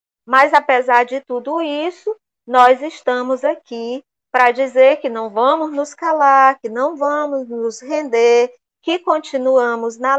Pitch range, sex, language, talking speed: 235-295 Hz, female, Portuguese, 135 wpm